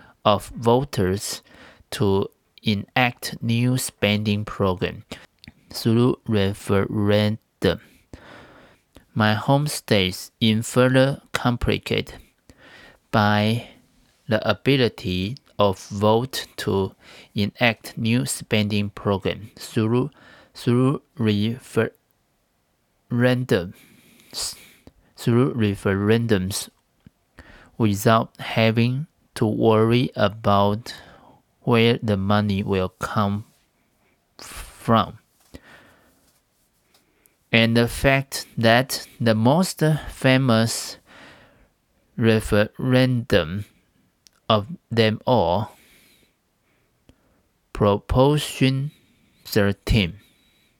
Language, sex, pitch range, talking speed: English, male, 100-125 Hz, 65 wpm